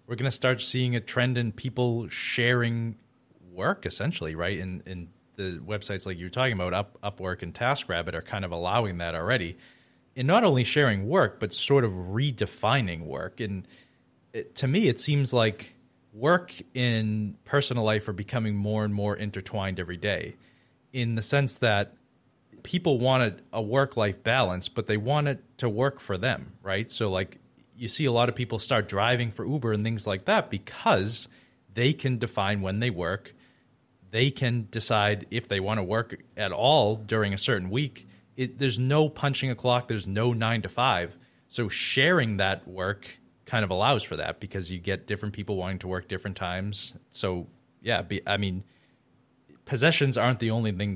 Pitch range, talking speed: 95-125 Hz, 180 wpm